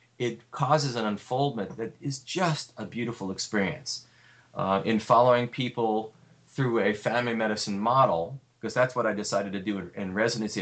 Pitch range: 100-125 Hz